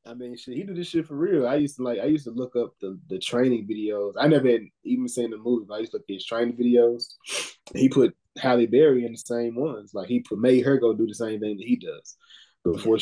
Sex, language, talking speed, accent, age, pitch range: male, English, 270 wpm, American, 10-29, 100-140 Hz